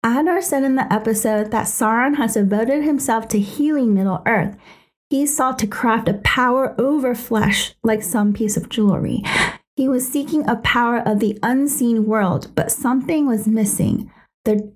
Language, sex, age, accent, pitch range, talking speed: English, female, 30-49, American, 215-270 Hz, 165 wpm